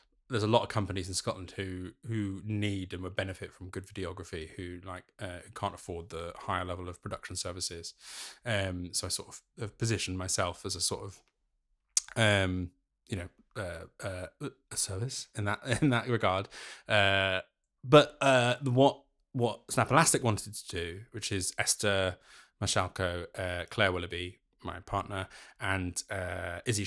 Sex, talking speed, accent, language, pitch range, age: male, 165 wpm, British, English, 90-110 Hz, 20-39